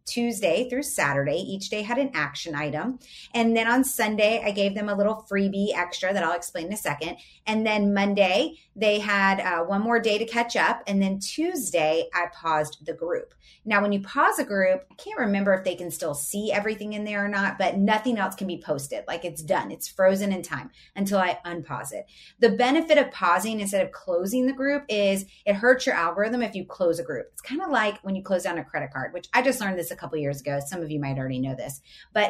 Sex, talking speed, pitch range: female, 240 wpm, 180-245 Hz